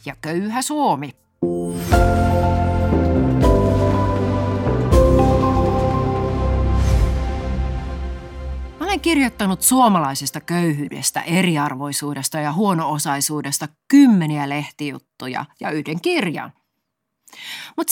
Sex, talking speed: female, 55 wpm